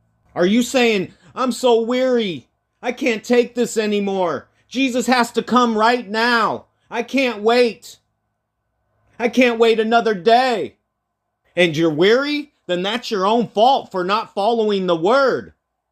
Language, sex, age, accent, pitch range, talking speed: English, male, 40-59, American, 180-235 Hz, 145 wpm